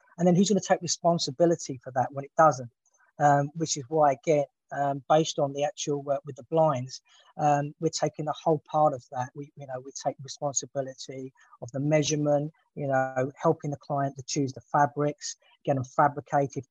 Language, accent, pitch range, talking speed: English, British, 140-160 Hz, 195 wpm